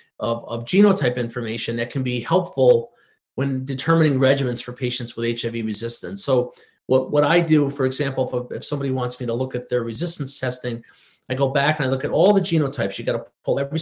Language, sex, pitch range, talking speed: English, male, 125-145 Hz, 215 wpm